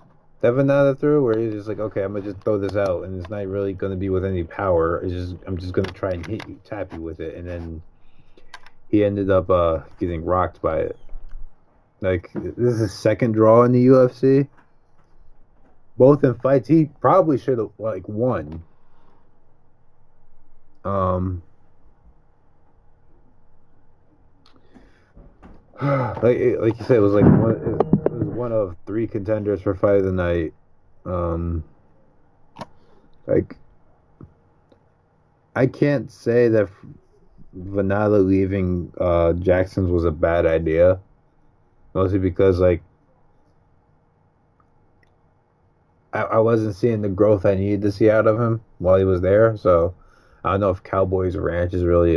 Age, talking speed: 30-49, 145 wpm